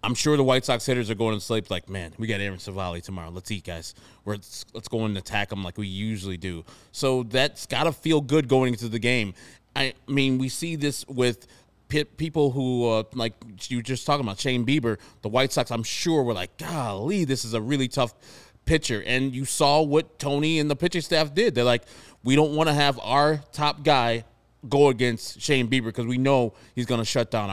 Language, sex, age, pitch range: English, male, 20-39, 115-140 Hz